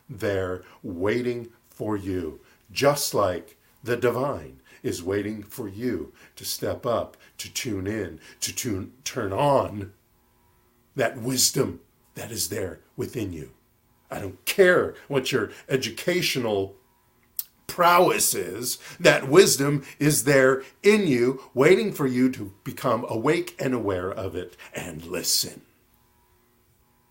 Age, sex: 50-69, male